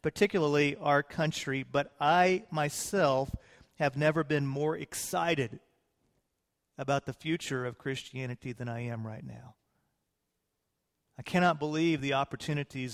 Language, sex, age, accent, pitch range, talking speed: English, male, 40-59, American, 135-165 Hz, 120 wpm